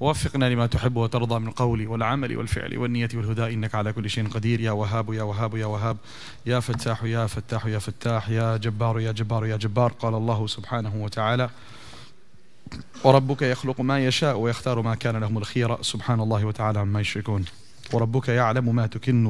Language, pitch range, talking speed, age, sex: English, 115-130 Hz, 170 wpm, 30-49, male